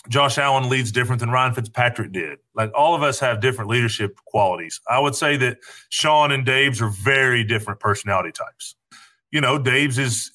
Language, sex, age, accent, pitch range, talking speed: English, male, 30-49, American, 110-130 Hz, 185 wpm